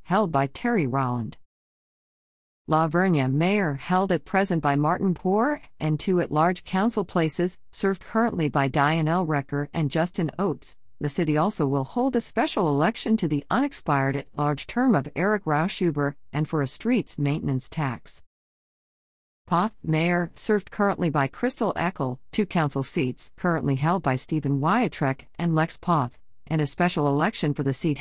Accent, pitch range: American, 140-200 Hz